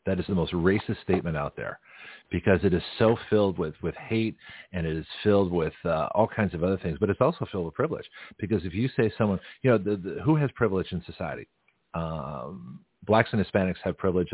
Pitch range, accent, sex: 85-110 Hz, American, male